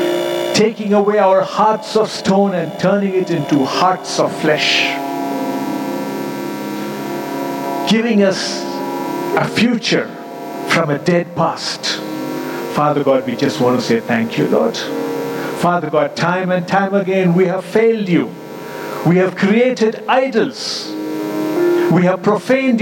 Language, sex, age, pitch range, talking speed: English, male, 60-79, 140-200 Hz, 125 wpm